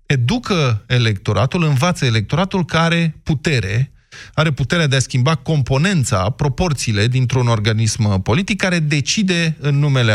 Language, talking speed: Romanian, 125 wpm